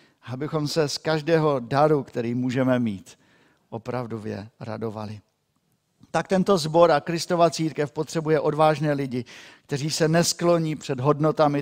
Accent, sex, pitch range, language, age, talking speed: native, male, 130-175 Hz, Czech, 50-69, 125 wpm